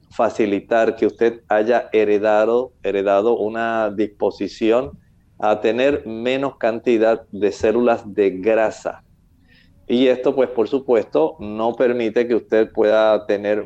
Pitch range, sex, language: 105-130 Hz, male, Spanish